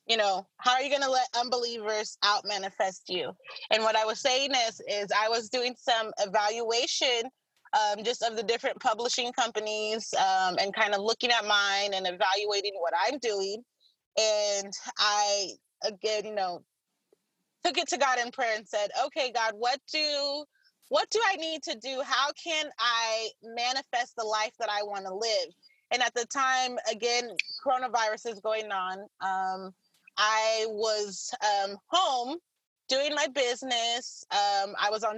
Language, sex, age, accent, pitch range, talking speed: English, female, 20-39, American, 210-260 Hz, 165 wpm